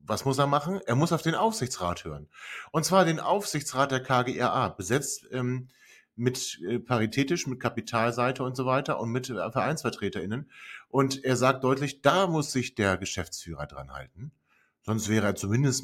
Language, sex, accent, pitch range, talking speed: German, male, German, 105-130 Hz, 170 wpm